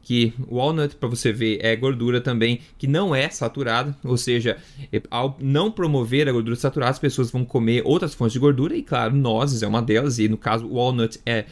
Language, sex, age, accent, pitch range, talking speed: Portuguese, male, 20-39, Brazilian, 120-150 Hz, 215 wpm